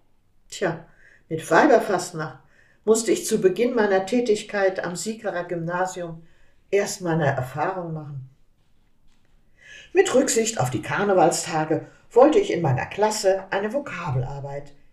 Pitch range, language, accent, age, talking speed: 145-215 Hz, German, German, 50-69, 115 wpm